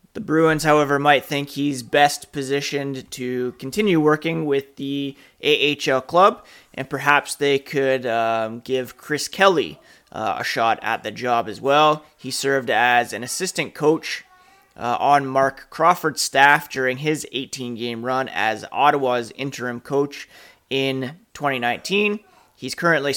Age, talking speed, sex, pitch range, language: 30-49, 140 wpm, male, 120-150 Hz, English